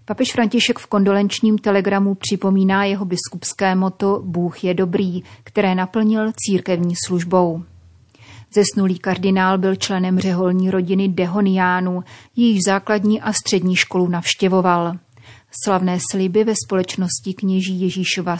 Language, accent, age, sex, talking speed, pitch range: Czech, native, 30-49, female, 115 wpm, 180-205 Hz